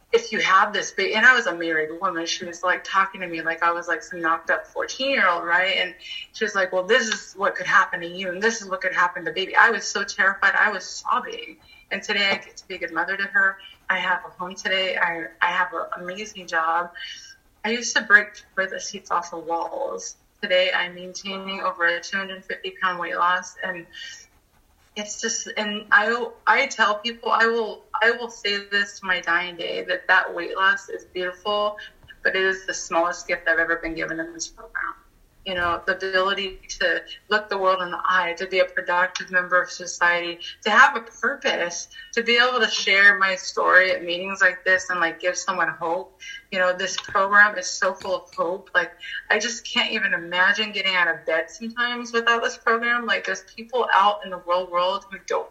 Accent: American